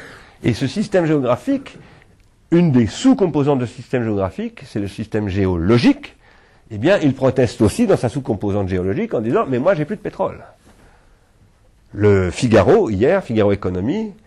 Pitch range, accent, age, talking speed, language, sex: 95-135 Hz, French, 50-69, 165 wpm, French, male